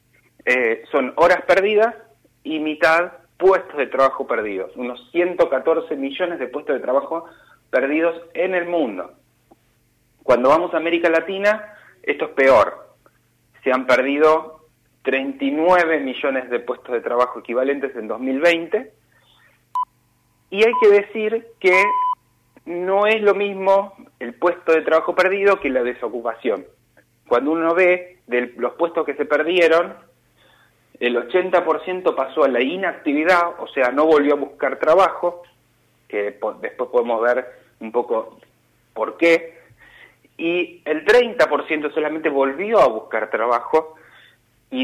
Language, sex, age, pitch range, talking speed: Spanish, male, 30-49, 140-195 Hz, 130 wpm